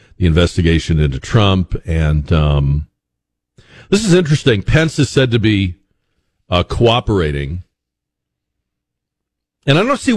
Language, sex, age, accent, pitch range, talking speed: English, male, 50-69, American, 80-115 Hz, 120 wpm